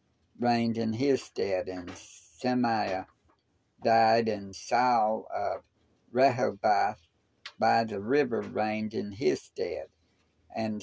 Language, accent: English, American